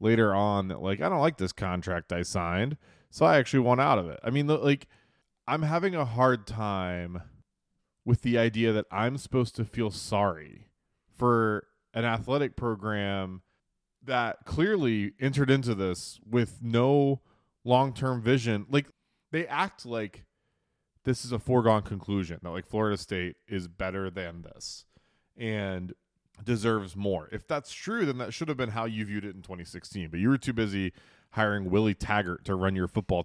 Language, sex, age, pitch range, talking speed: English, male, 20-39, 95-125 Hz, 170 wpm